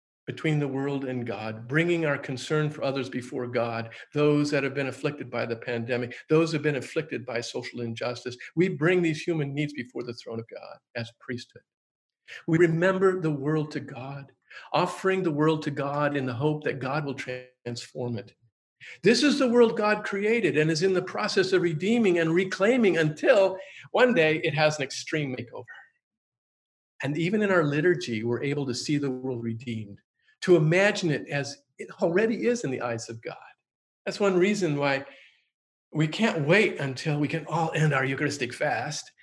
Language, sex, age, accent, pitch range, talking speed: English, male, 50-69, American, 130-185 Hz, 185 wpm